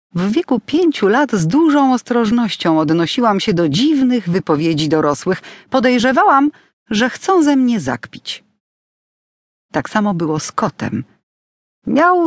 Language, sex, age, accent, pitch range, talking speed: Polish, female, 40-59, native, 155-240 Hz, 120 wpm